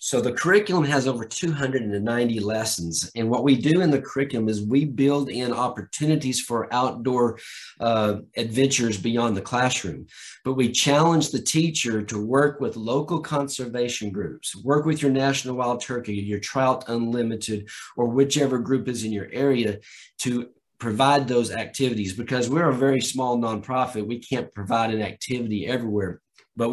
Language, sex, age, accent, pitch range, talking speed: English, male, 40-59, American, 110-140 Hz, 155 wpm